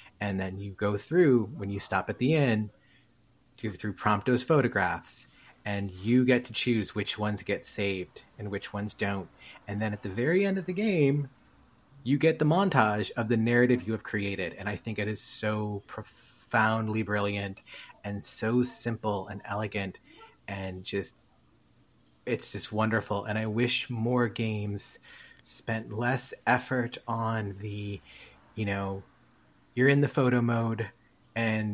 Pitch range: 100-120 Hz